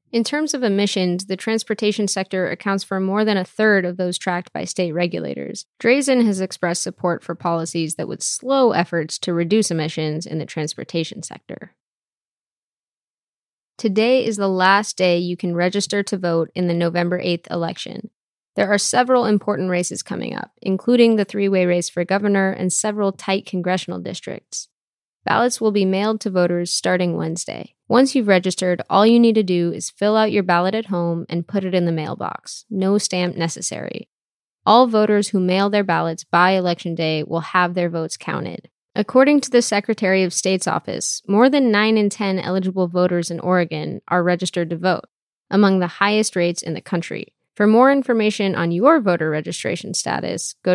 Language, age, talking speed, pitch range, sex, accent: English, 20-39, 180 wpm, 175-210 Hz, female, American